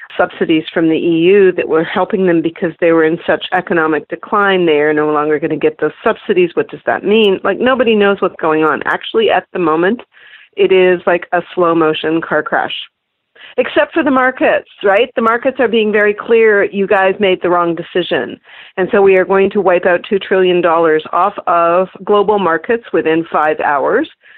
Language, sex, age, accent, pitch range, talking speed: English, female, 40-59, American, 165-210 Hz, 195 wpm